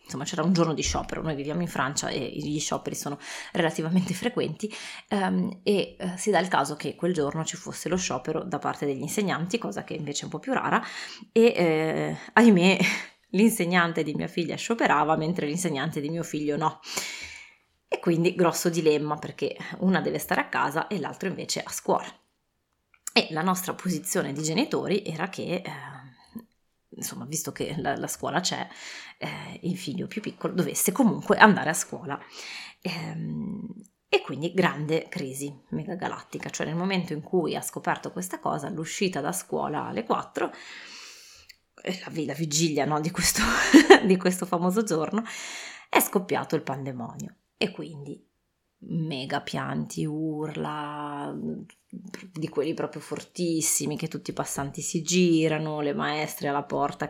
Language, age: Italian, 20-39